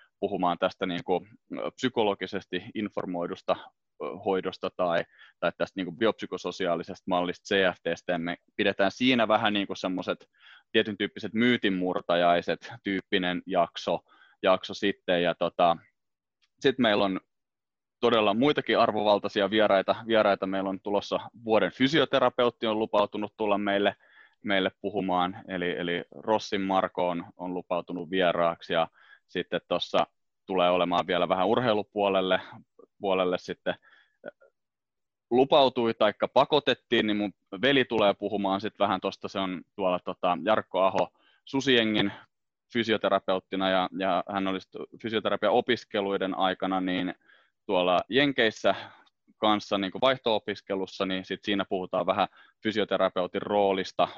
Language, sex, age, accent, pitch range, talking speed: Finnish, male, 20-39, native, 95-105 Hz, 115 wpm